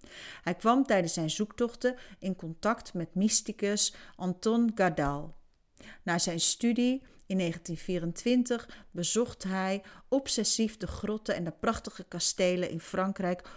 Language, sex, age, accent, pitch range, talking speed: Dutch, female, 40-59, Dutch, 170-210 Hz, 120 wpm